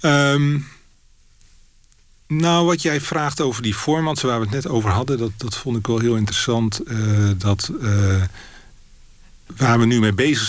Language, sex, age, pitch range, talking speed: Dutch, male, 40-59, 100-120 Hz, 165 wpm